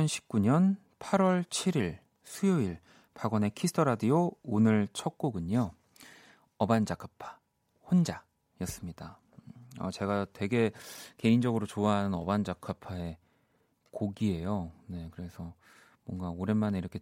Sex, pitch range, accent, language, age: male, 100-145 Hz, native, Korean, 30-49